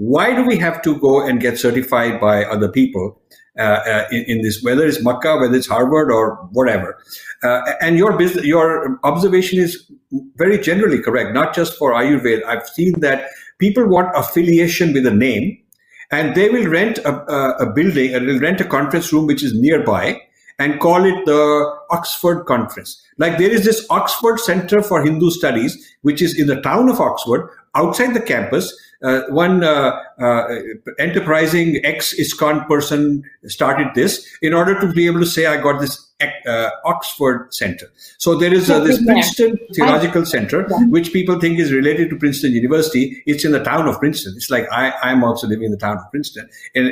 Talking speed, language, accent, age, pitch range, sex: 185 wpm, English, Indian, 50-69, 135-180 Hz, male